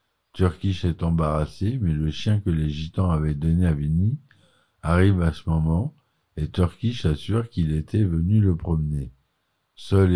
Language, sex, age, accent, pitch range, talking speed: French, male, 50-69, French, 75-95 Hz, 155 wpm